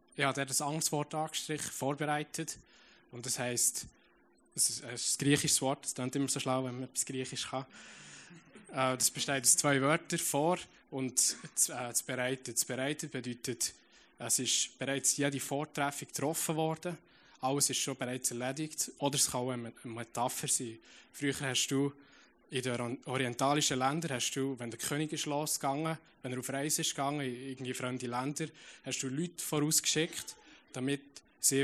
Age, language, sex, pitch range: 20-39, German, male, 125-145 Hz